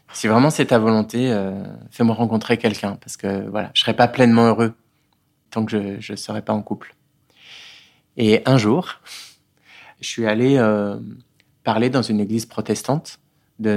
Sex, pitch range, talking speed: male, 100-120 Hz, 170 wpm